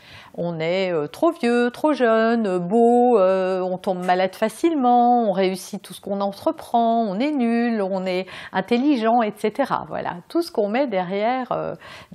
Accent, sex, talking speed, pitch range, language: French, female, 160 wpm, 185-250 Hz, French